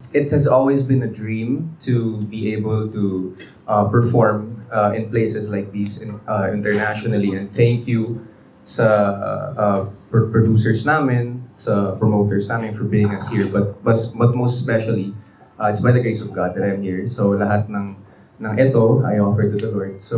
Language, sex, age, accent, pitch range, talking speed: Filipino, male, 20-39, native, 105-130 Hz, 185 wpm